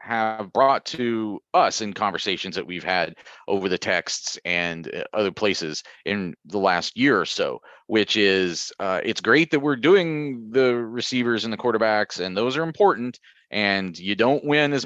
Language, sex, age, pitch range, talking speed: English, male, 30-49, 90-135 Hz, 175 wpm